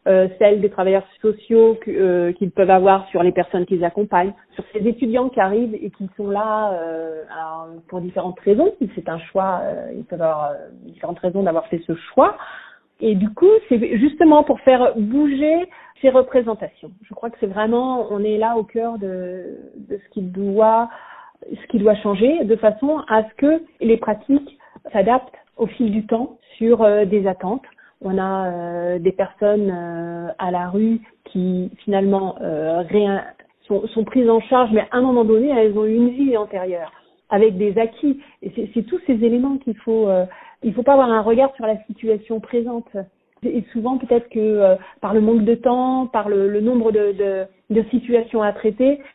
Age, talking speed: 40-59, 190 wpm